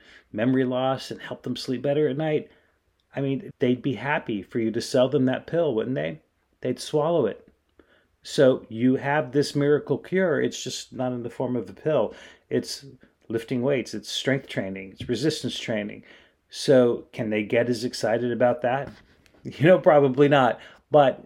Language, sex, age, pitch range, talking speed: English, male, 30-49, 115-135 Hz, 180 wpm